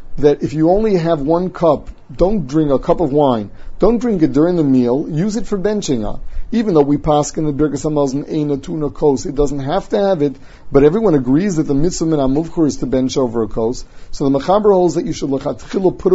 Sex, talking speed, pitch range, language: male, 225 wpm, 135-165 Hz, English